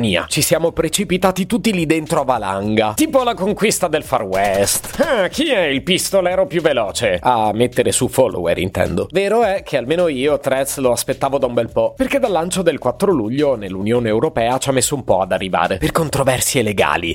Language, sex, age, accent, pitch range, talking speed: Italian, male, 30-49, native, 105-155 Hz, 195 wpm